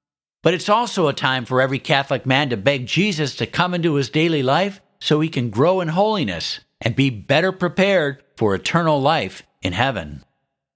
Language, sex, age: English, male, 50-69